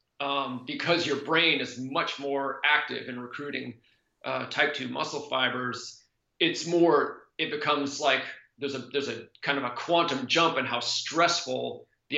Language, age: English, 30-49